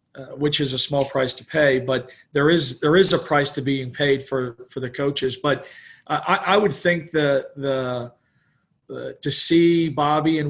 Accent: American